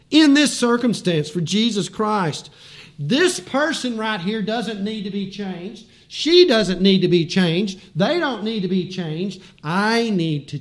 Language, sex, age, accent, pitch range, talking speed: English, male, 50-69, American, 145-220 Hz, 170 wpm